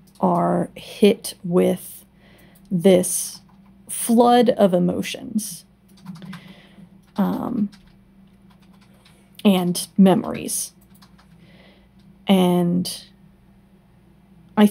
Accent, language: American, English